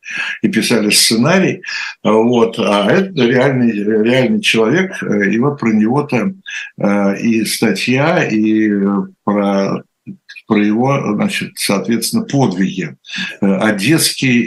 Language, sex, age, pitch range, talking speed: Russian, male, 60-79, 115-170 Hz, 100 wpm